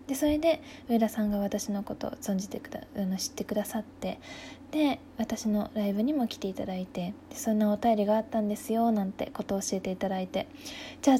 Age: 20-39